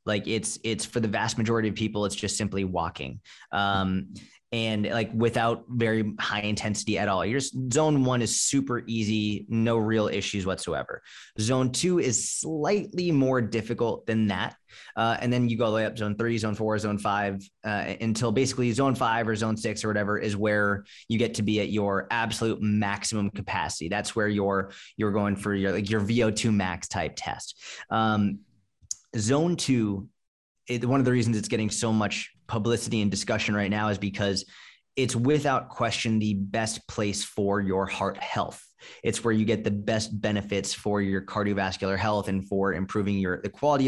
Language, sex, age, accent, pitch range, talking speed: Greek, male, 20-39, American, 100-115 Hz, 185 wpm